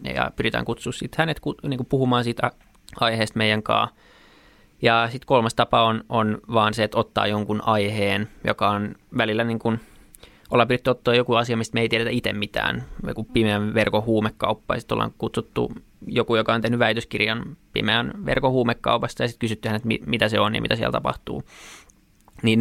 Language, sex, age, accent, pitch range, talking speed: Finnish, male, 20-39, native, 105-115 Hz, 175 wpm